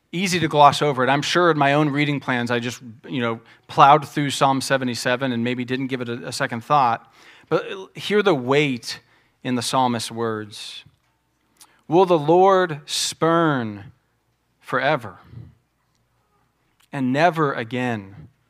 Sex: male